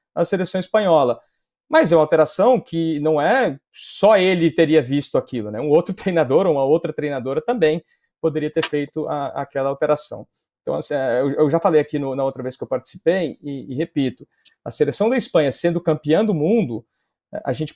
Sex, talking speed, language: male, 190 wpm, Portuguese